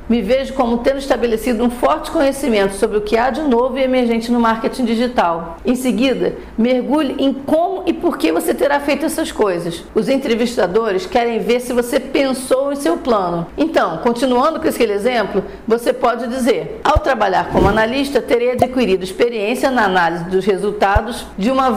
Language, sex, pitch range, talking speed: Portuguese, female, 230-280 Hz, 175 wpm